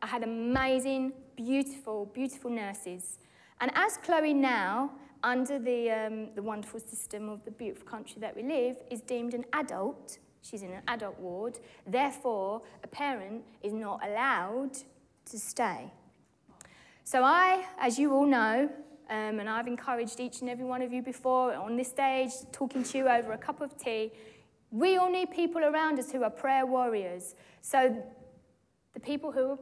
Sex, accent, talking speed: female, British, 170 wpm